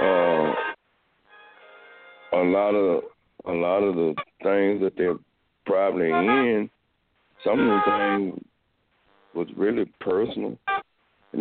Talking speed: 110 wpm